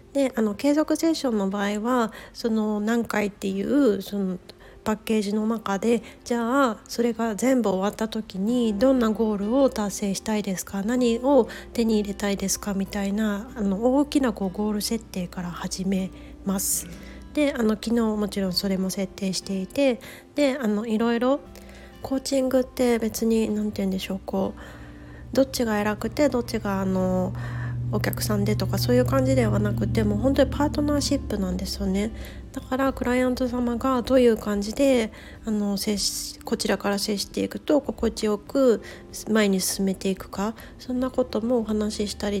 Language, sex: Japanese, female